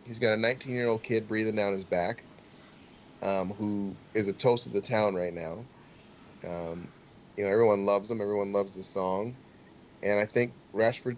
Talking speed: 190 wpm